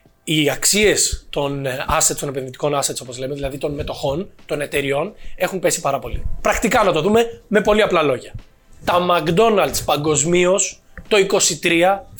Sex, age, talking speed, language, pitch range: male, 20-39, 150 wpm, Greek, 160-225 Hz